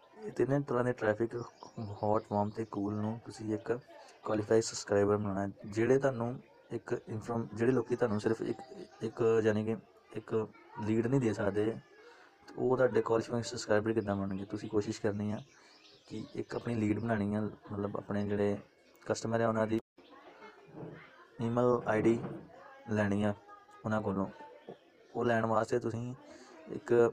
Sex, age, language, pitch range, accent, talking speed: male, 20-39, Hindi, 105-115 Hz, native, 130 wpm